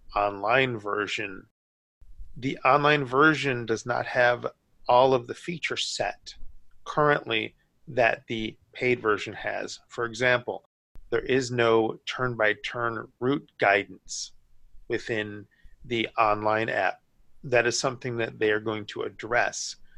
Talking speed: 120 wpm